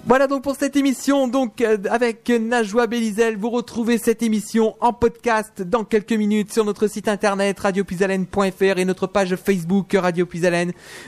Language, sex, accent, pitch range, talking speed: French, male, French, 150-210 Hz, 165 wpm